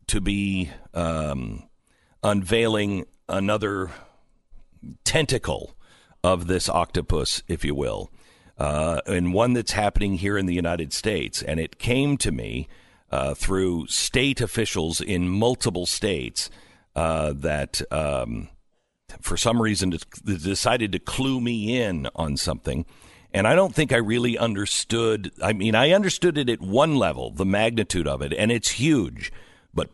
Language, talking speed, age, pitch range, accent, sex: English, 140 wpm, 50-69, 90-120 Hz, American, male